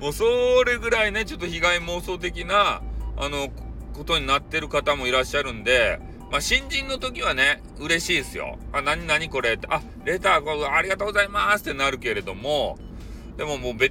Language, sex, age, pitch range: Japanese, male, 40-59, 130-185 Hz